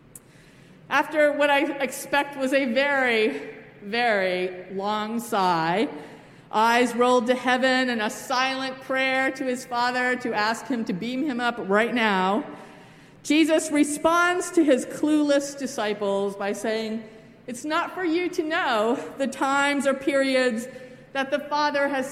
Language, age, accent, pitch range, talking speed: English, 50-69, American, 215-280 Hz, 140 wpm